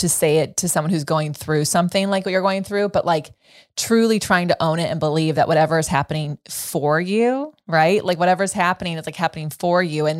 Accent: American